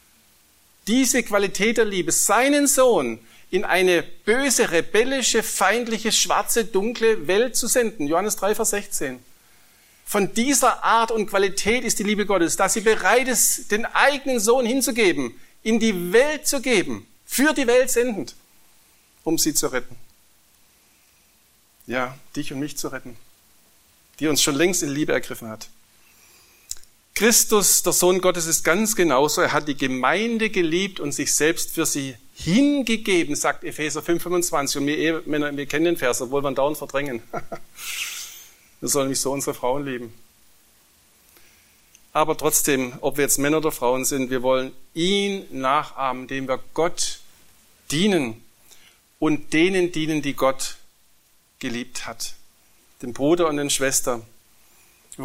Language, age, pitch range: German, 50-69, 135-215 Hz